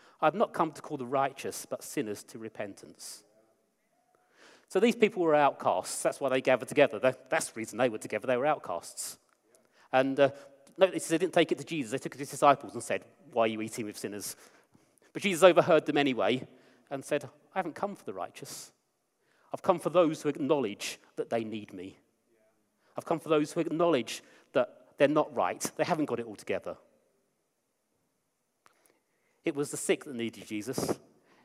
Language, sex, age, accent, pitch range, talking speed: English, male, 40-59, British, 140-170 Hz, 185 wpm